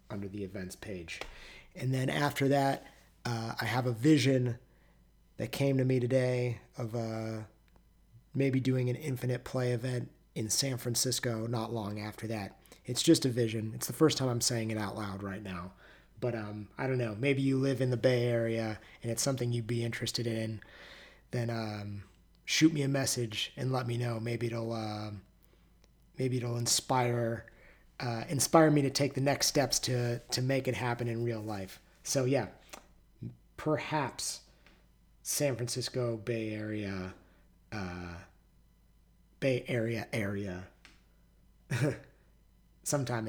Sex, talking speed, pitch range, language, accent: male, 155 wpm, 105-130 Hz, English, American